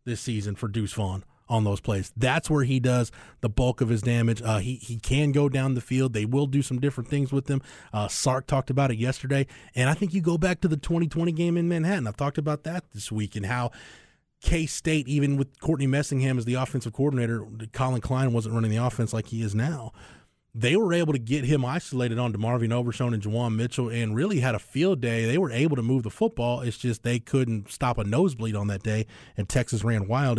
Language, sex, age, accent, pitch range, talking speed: English, male, 20-39, American, 115-140 Hz, 235 wpm